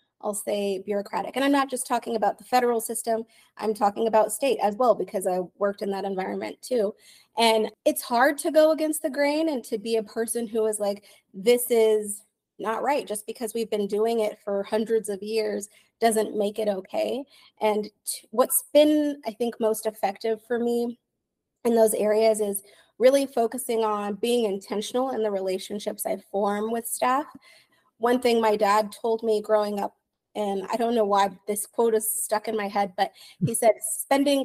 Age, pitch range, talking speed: 30-49, 210-250 Hz, 190 wpm